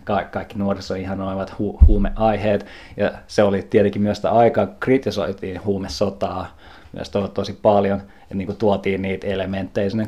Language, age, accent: Finnish, 20-39, native